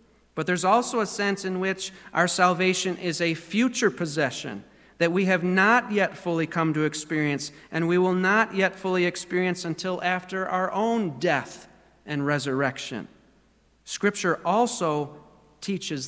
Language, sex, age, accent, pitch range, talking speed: English, male, 40-59, American, 155-190 Hz, 145 wpm